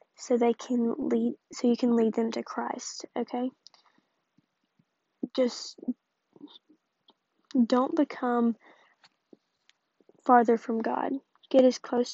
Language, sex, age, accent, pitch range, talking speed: English, female, 20-39, American, 245-265 Hz, 105 wpm